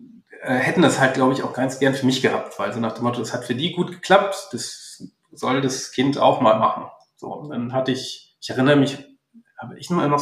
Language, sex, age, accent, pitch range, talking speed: German, male, 40-59, German, 130-155 Hz, 245 wpm